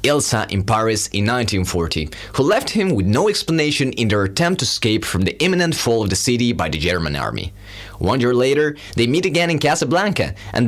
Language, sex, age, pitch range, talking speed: English, male, 30-49, 100-165 Hz, 200 wpm